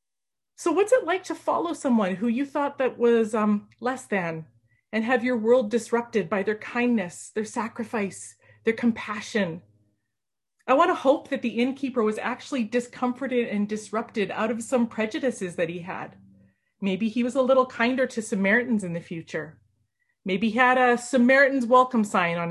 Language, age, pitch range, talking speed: English, 30-49, 205-255 Hz, 170 wpm